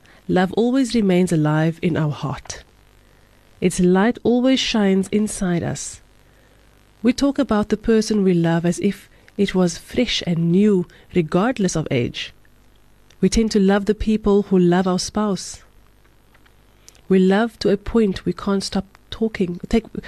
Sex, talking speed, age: female, 150 wpm, 30-49